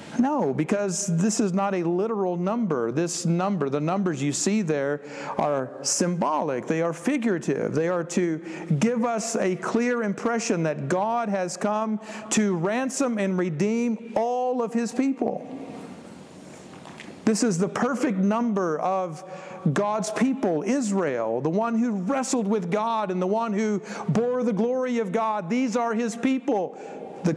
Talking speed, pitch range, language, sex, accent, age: 150 wpm, 175-225 Hz, English, male, American, 50-69